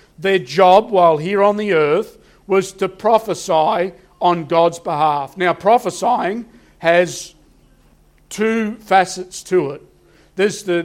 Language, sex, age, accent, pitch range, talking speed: English, male, 50-69, Australian, 160-200 Hz, 115 wpm